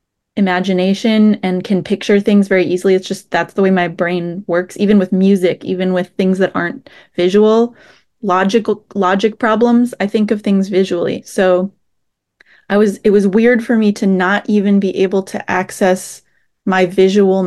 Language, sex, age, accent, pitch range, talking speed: English, female, 20-39, American, 185-220 Hz, 170 wpm